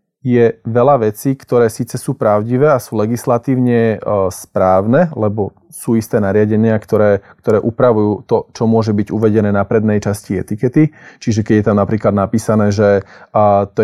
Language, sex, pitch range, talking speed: Slovak, male, 110-135 Hz, 150 wpm